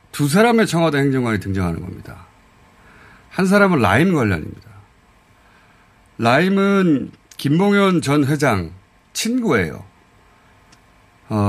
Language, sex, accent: Korean, male, native